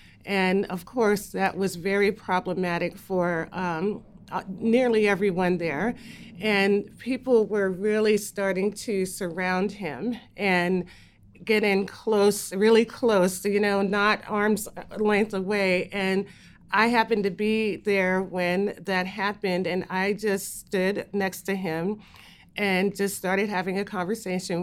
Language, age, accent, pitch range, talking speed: English, 40-59, American, 185-210 Hz, 130 wpm